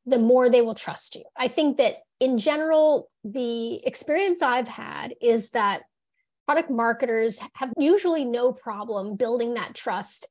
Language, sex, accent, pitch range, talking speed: English, female, American, 220-280 Hz, 150 wpm